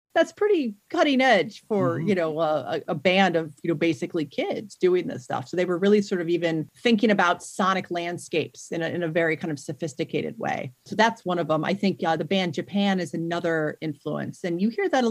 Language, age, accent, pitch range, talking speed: English, 40-59, American, 160-200 Hz, 225 wpm